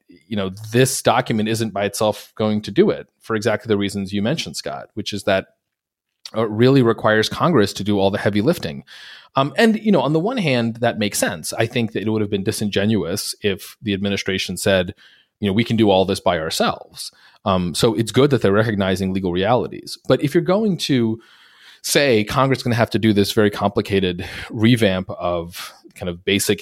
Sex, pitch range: male, 100-120 Hz